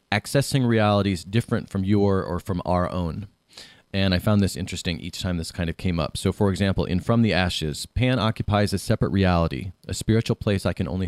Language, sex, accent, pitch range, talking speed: English, male, American, 90-115 Hz, 210 wpm